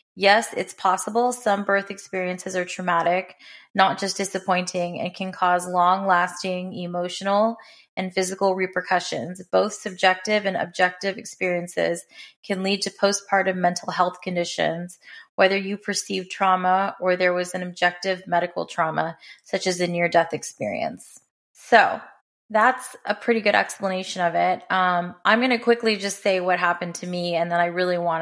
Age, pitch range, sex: 20-39, 175-195 Hz, female